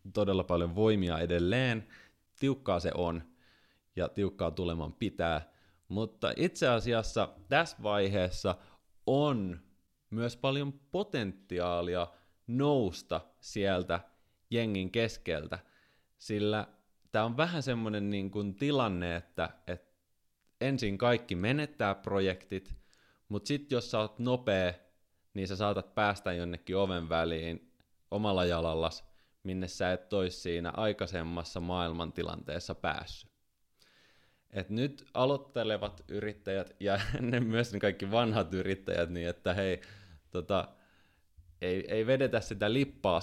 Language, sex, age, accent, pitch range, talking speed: Finnish, male, 30-49, native, 85-110 Hz, 110 wpm